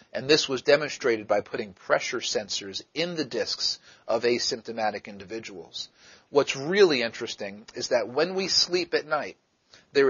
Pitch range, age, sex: 120-165 Hz, 40-59, male